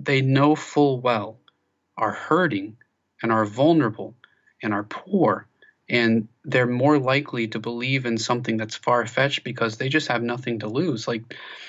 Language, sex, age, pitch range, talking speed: English, male, 30-49, 110-125 Hz, 160 wpm